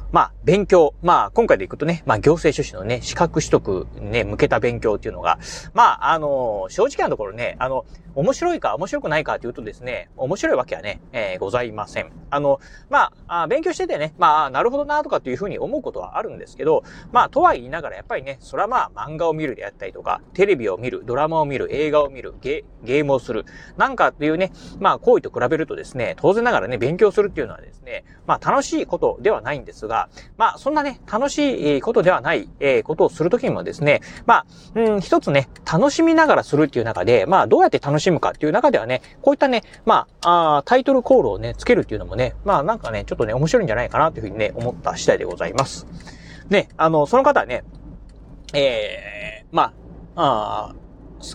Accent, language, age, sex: native, Japanese, 30-49, male